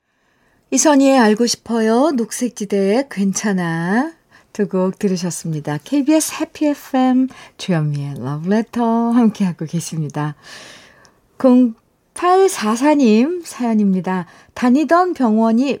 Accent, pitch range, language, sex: native, 180-255 Hz, Korean, female